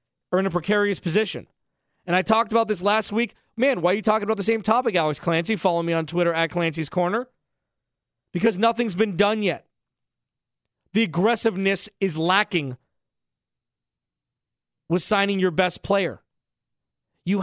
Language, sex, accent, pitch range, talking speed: English, male, American, 185-230 Hz, 155 wpm